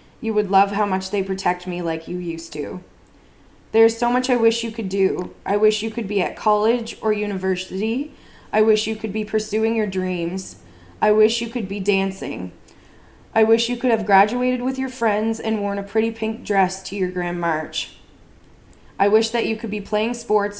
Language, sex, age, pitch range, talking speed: English, female, 20-39, 170-215 Hz, 205 wpm